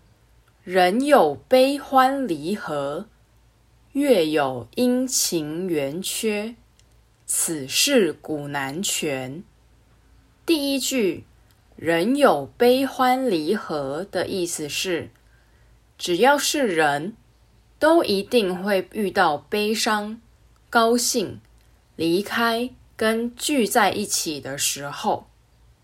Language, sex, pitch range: English, female, 155-250 Hz